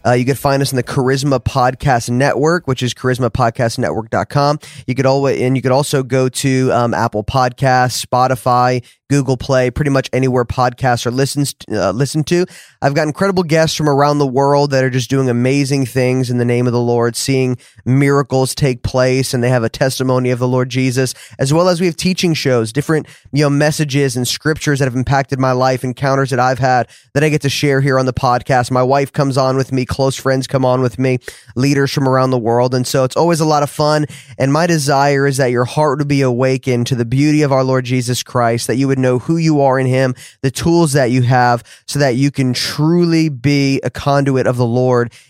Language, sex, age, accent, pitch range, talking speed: English, male, 20-39, American, 125-145 Hz, 215 wpm